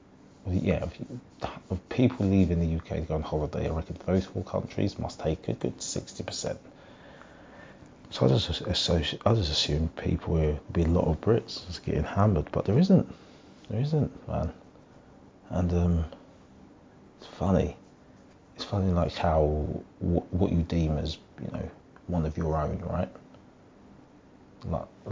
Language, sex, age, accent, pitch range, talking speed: English, male, 30-49, British, 80-95 Hz, 150 wpm